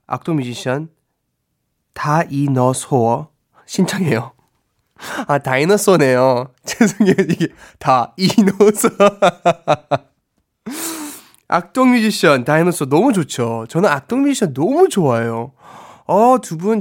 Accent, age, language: native, 20-39, Korean